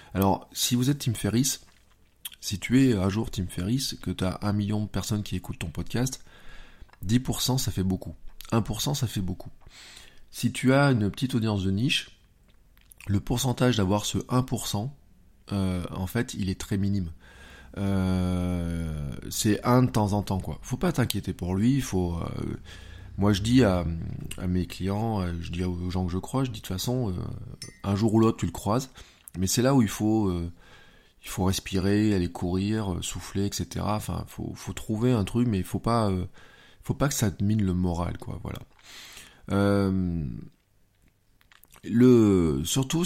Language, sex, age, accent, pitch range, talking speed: French, male, 20-39, French, 90-120 Hz, 185 wpm